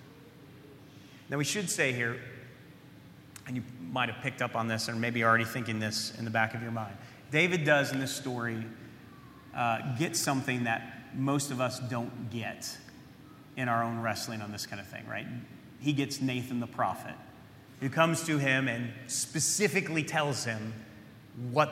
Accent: American